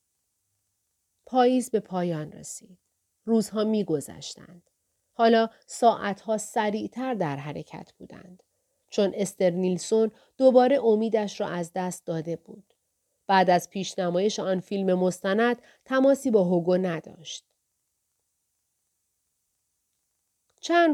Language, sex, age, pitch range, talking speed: Persian, female, 40-59, 175-230 Hz, 95 wpm